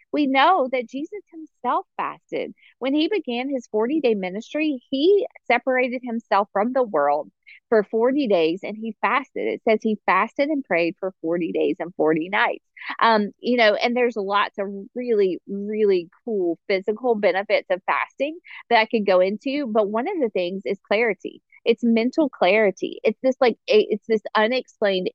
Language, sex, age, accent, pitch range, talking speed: English, female, 40-59, American, 190-250 Hz, 170 wpm